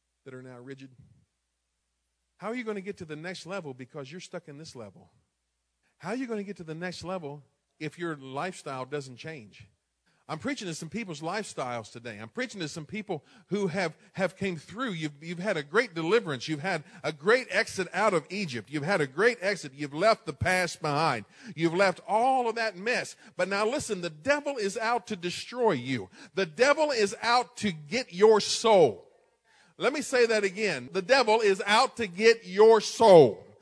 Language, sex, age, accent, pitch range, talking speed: English, male, 50-69, American, 165-230 Hz, 200 wpm